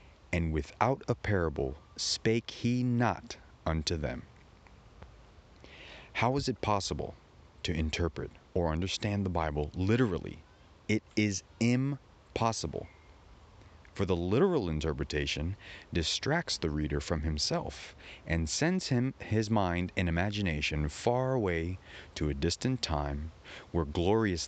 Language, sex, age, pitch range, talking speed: English, male, 30-49, 80-105 Hz, 115 wpm